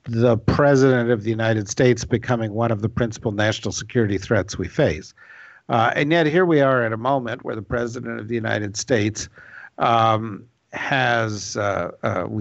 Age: 50-69